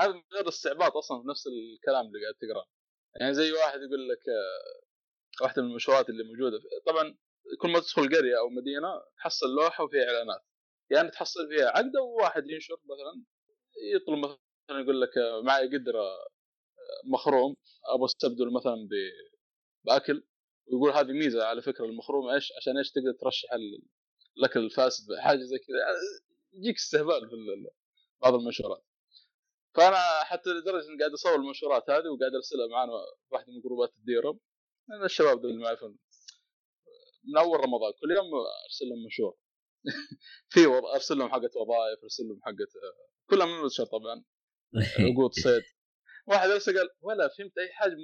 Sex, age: male, 20-39